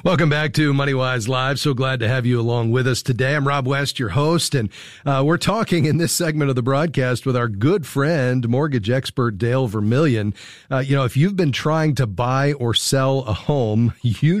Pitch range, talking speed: 120-150 Hz, 215 wpm